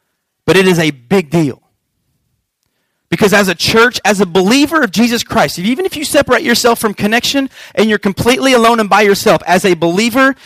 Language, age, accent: English, 30-49, American